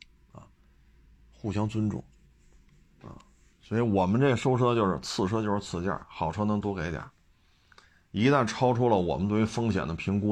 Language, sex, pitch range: Chinese, male, 80-110 Hz